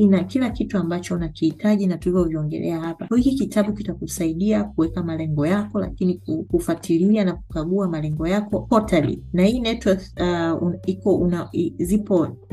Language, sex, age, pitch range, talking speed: Swahili, female, 30-49, 155-185 Hz, 145 wpm